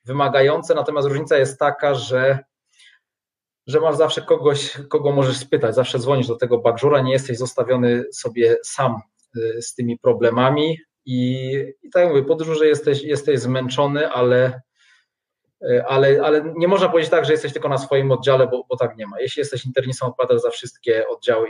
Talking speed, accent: 170 wpm, native